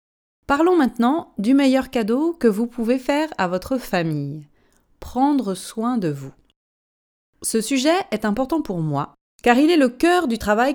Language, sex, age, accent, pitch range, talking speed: French, female, 30-49, French, 180-260 Hz, 160 wpm